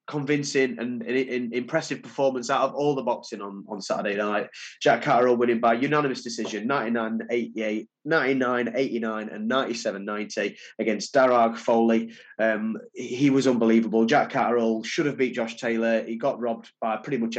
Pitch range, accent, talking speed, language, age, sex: 115-130 Hz, British, 165 wpm, English, 20-39, male